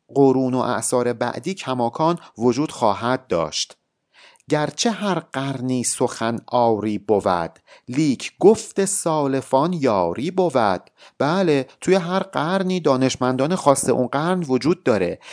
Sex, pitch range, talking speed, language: male, 125-165 Hz, 115 wpm, Persian